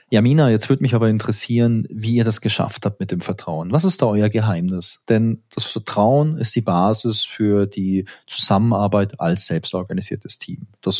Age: 30-49